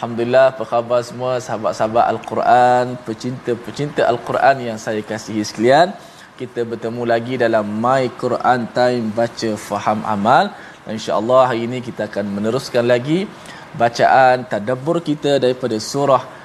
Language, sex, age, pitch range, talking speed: Malayalam, male, 20-39, 110-130 Hz, 130 wpm